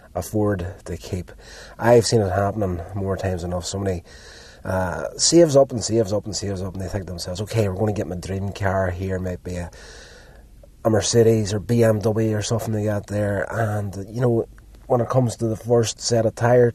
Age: 30-49